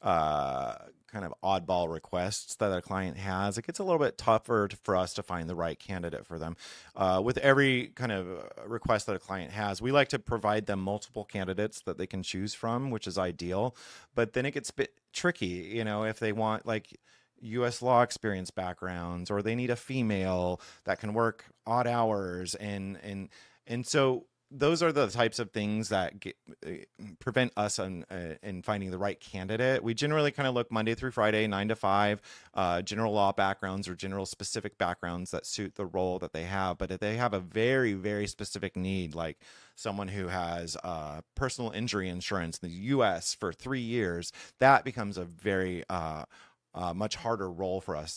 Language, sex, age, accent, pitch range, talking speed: English, male, 30-49, American, 90-115 Hz, 200 wpm